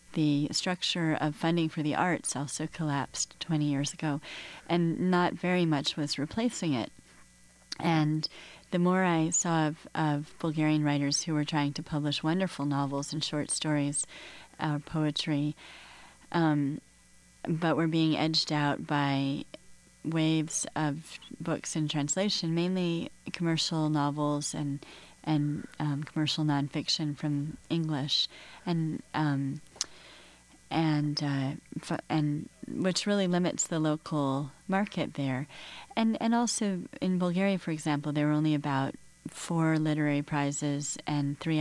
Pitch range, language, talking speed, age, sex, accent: 145-170 Hz, English, 130 wpm, 30-49, female, American